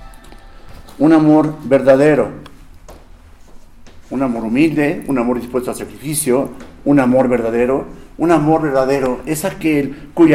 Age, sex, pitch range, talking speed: 50-69, male, 115-155 Hz, 115 wpm